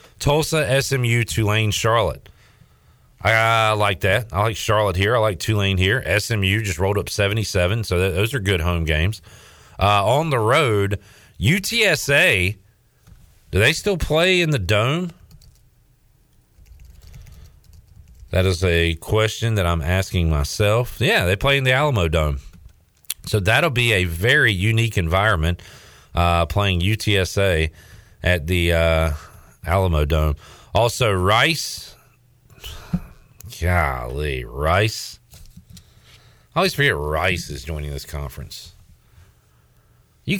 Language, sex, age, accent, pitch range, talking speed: English, male, 40-59, American, 85-115 Hz, 120 wpm